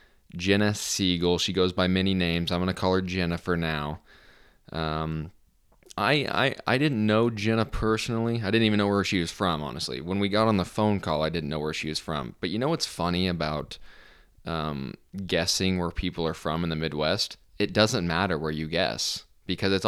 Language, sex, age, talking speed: English, male, 20-39, 205 wpm